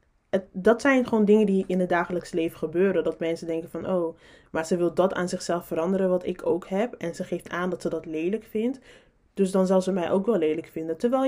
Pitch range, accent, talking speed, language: 170-210 Hz, Dutch, 240 wpm, Dutch